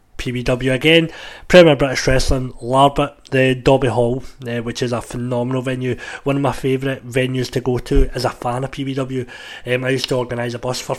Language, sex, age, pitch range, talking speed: English, male, 30-49, 120-135 Hz, 195 wpm